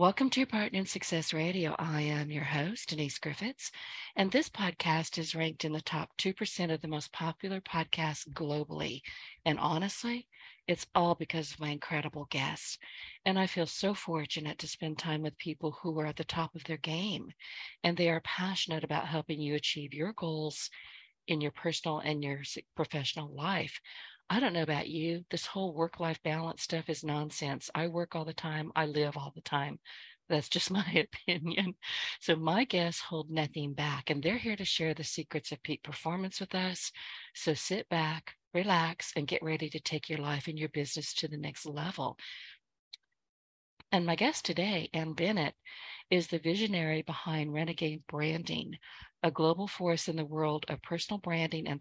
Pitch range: 155-185 Hz